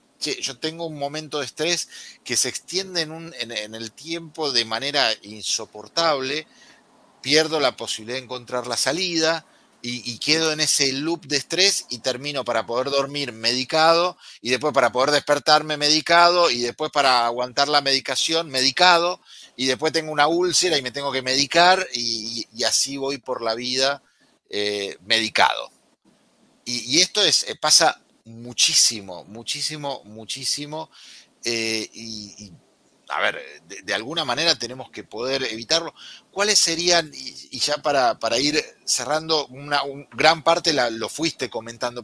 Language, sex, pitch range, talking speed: Spanish, male, 125-160 Hz, 150 wpm